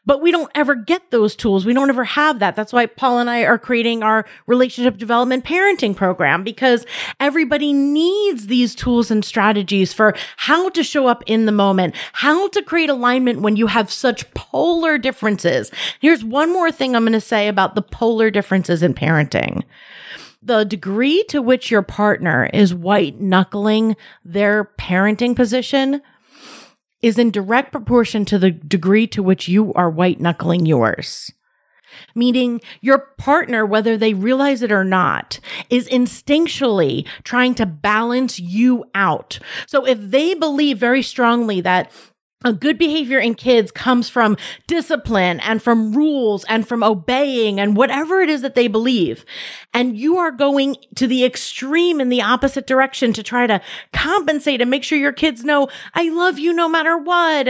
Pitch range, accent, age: 215-295 Hz, American, 30-49